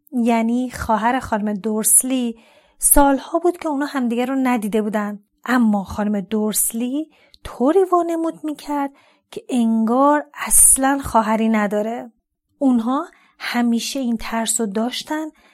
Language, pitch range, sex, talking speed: Persian, 220-285 Hz, female, 110 wpm